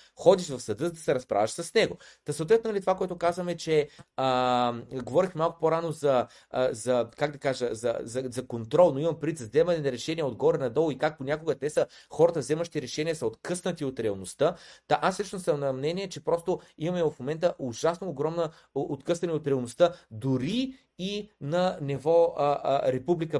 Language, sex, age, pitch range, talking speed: Bulgarian, male, 30-49, 145-185 Hz, 185 wpm